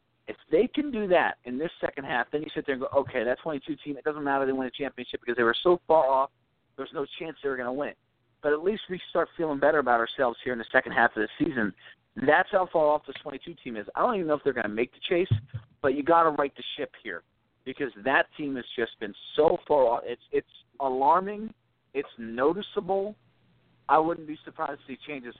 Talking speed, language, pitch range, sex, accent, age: 250 wpm, English, 125-165 Hz, male, American, 50-69